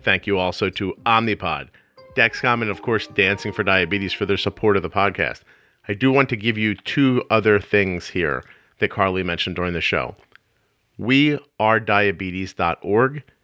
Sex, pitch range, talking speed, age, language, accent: male, 95-125 Hz, 155 wpm, 40-59, English, American